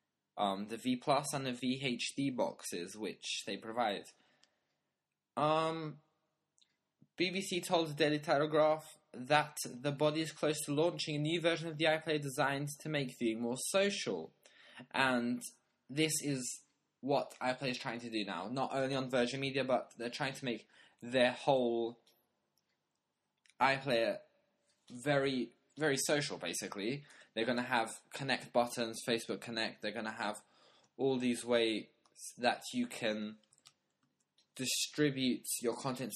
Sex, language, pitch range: male, English, 120-150 Hz